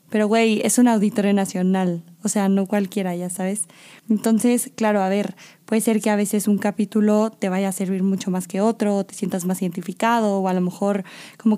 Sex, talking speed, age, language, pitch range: female, 215 wpm, 20-39, Spanish, 190-215 Hz